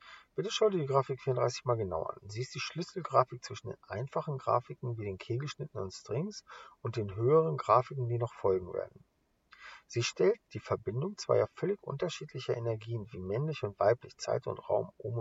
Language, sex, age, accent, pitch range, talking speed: English, male, 50-69, German, 115-185 Hz, 180 wpm